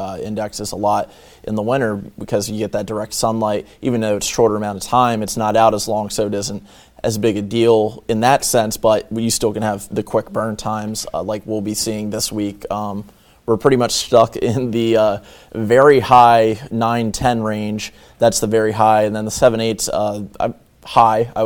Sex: male